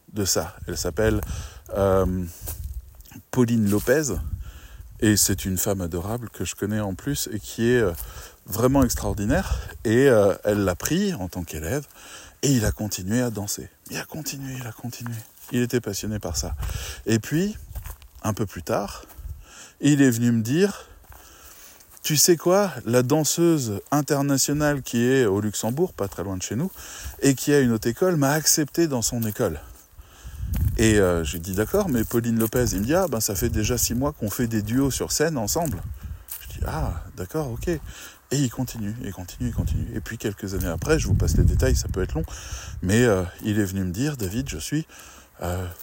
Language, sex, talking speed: French, male, 195 wpm